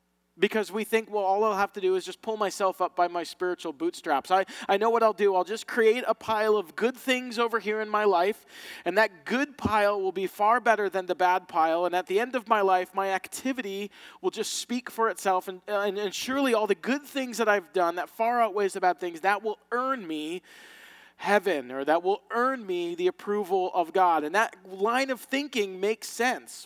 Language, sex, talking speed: English, male, 225 wpm